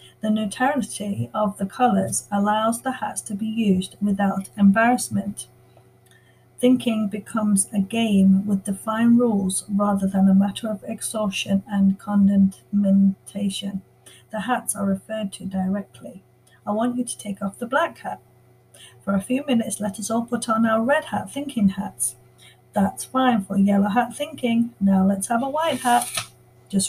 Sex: female